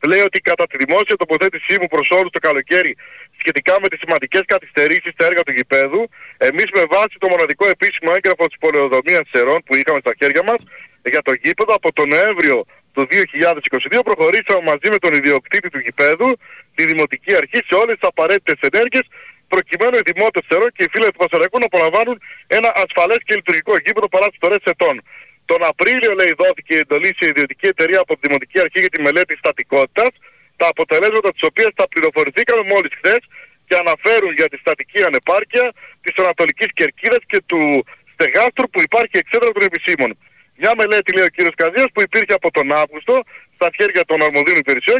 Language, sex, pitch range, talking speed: Greek, male, 170-260 Hz, 175 wpm